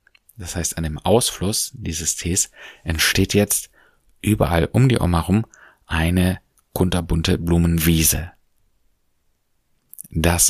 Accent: German